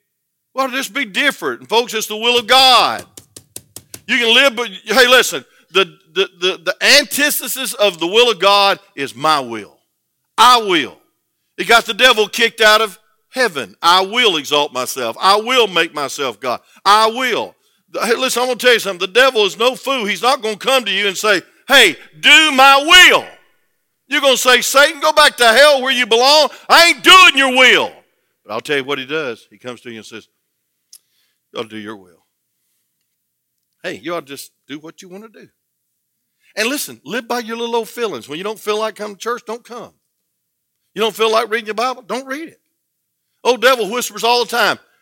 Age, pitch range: 50-69, 195-270 Hz